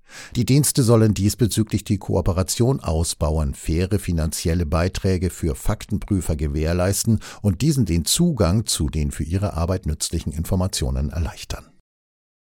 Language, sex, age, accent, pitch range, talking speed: German, male, 50-69, German, 80-105 Hz, 120 wpm